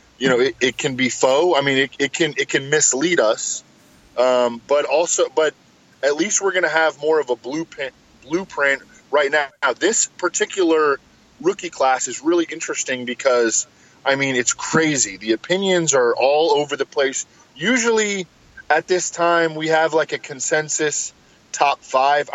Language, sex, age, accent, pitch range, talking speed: English, male, 20-39, American, 125-160 Hz, 170 wpm